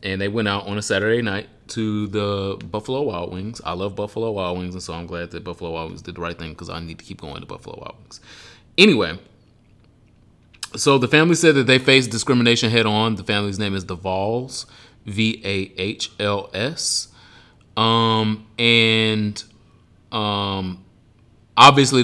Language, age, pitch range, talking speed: English, 30-49, 95-115 Hz, 165 wpm